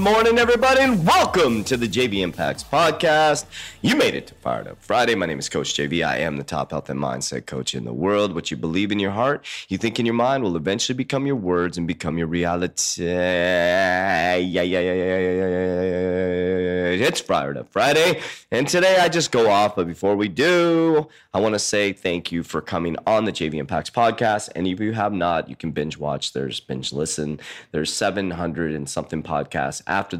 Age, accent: 30-49, American